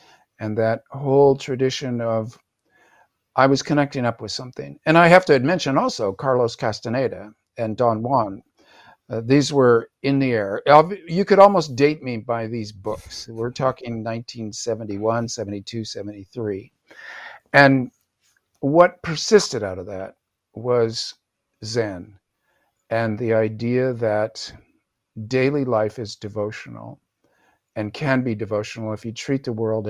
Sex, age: male, 50-69